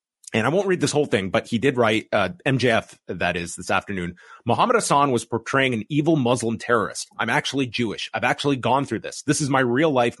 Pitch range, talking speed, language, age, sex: 115-145 Hz, 225 wpm, English, 30-49, male